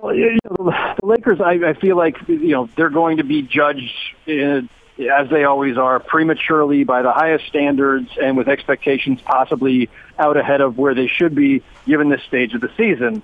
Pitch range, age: 140-175 Hz, 40-59